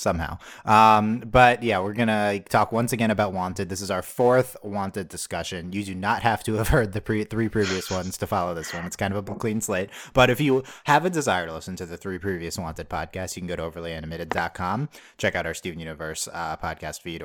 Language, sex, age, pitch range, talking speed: English, male, 30-49, 85-110 Hz, 230 wpm